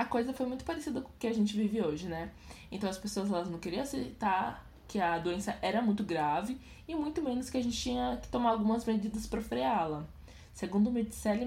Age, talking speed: 20-39, 210 wpm